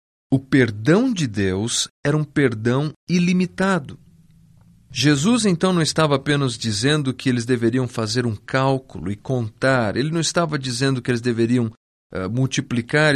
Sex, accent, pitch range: male, Brazilian, 115-155 Hz